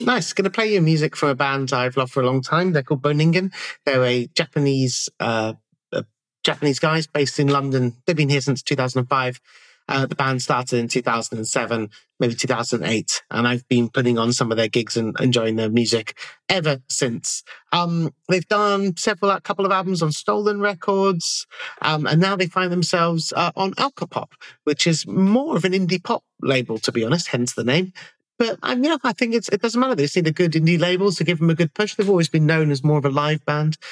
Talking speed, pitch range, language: 210 wpm, 130-180 Hz, English